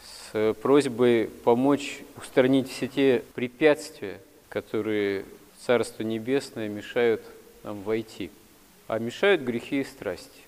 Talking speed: 105 wpm